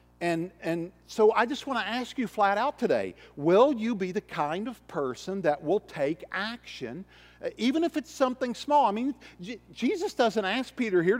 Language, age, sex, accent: English, 50-69, male, American